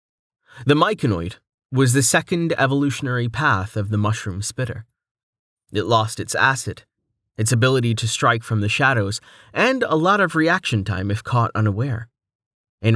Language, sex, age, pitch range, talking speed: English, male, 30-49, 110-140 Hz, 150 wpm